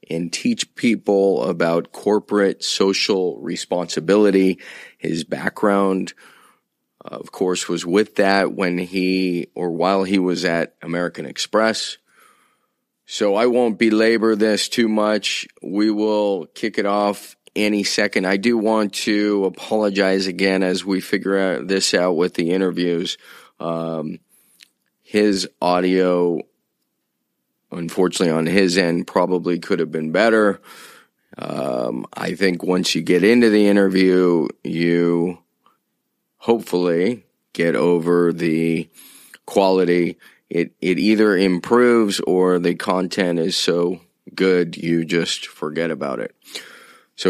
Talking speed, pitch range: 120 wpm, 85-100 Hz